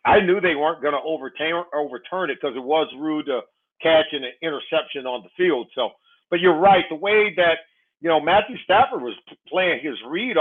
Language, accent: English, American